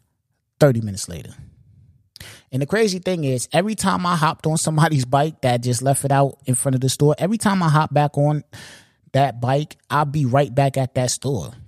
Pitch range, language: 105-135 Hz, English